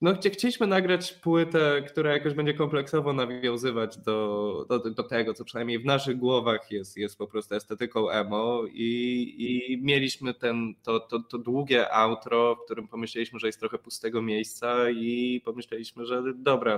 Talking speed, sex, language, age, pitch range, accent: 160 wpm, male, Polish, 20-39, 115-150 Hz, native